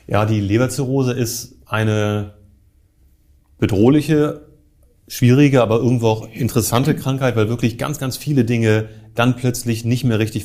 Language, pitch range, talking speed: German, 105-130 Hz, 130 wpm